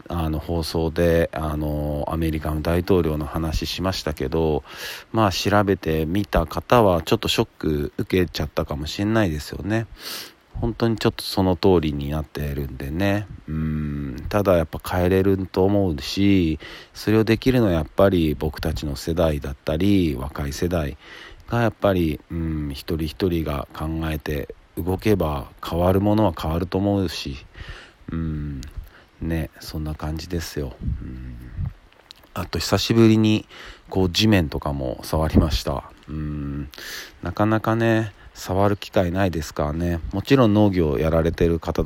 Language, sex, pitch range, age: Japanese, male, 75-95 Hz, 40-59